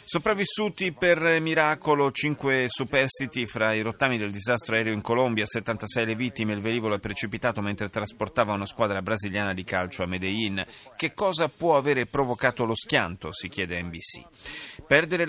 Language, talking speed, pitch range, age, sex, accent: Italian, 160 wpm, 105-135 Hz, 30-49, male, native